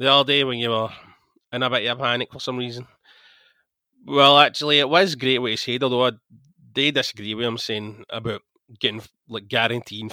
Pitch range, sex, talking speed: 110-135 Hz, male, 200 wpm